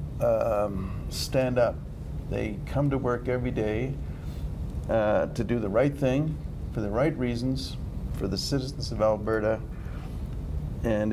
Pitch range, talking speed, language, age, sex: 95-130 Hz, 135 wpm, English, 50-69, male